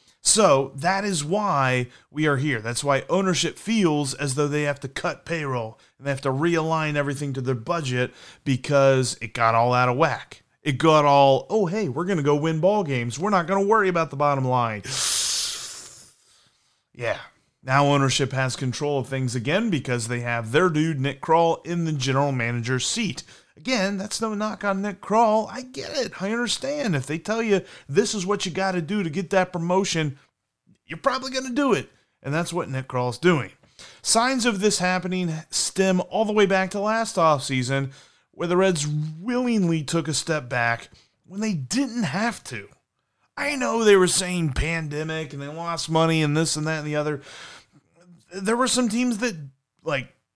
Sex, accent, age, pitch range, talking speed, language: male, American, 30-49, 140-195 Hz, 195 wpm, English